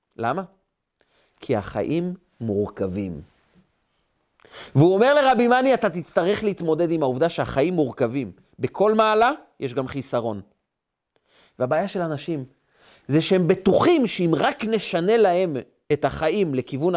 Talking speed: 115 wpm